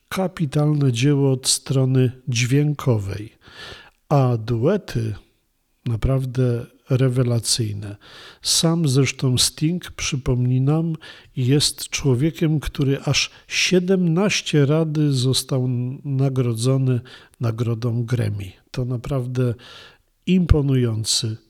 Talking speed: 75 wpm